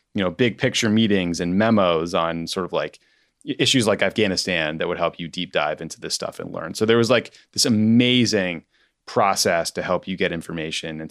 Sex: male